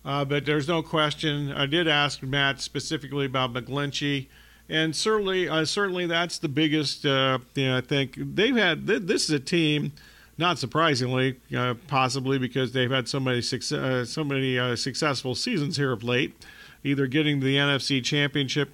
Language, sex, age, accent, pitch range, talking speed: English, male, 40-59, American, 130-155 Hz, 175 wpm